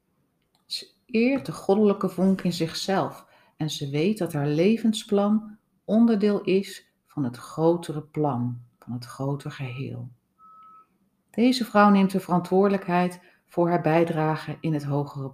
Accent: Dutch